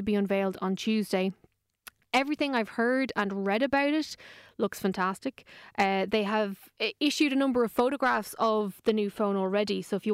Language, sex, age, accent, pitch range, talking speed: English, female, 20-39, Irish, 200-250 Hz, 180 wpm